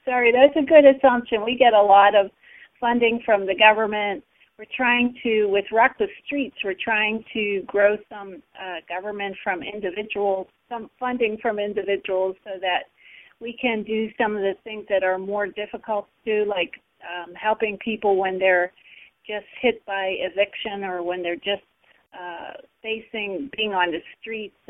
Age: 40-59